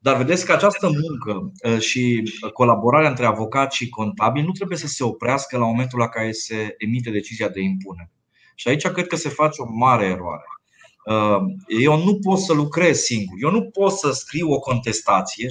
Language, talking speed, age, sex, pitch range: Romanian, 180 wpm, 20-39, male, 115-155 Hz